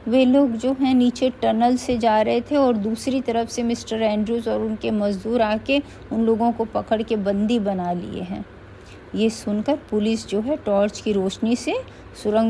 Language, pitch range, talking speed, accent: Hindi, 200-260 Hz, 185 wpm, native